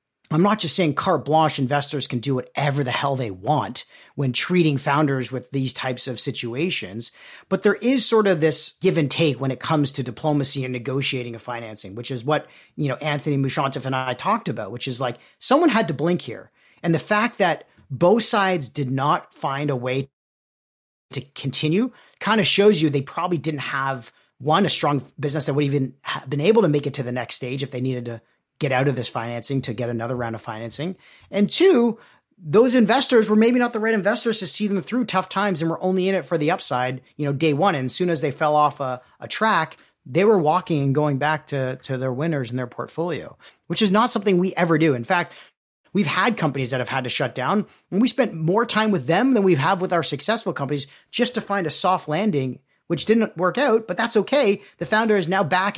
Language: English